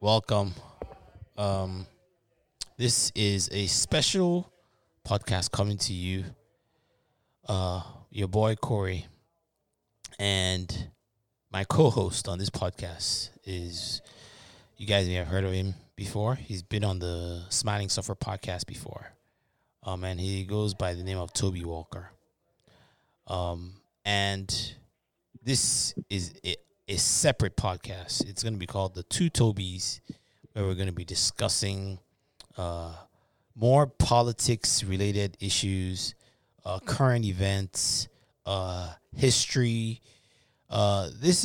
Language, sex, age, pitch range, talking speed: English, male, 20-39, 95-115 Hz, 115 wpm